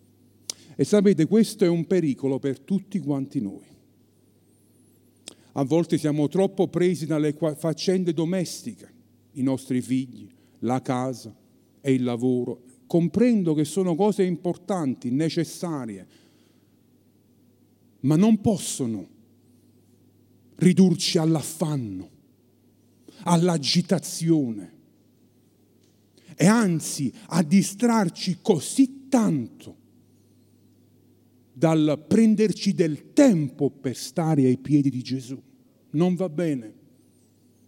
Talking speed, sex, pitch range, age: 90 wpm, male, 125-205 Hz, 50-69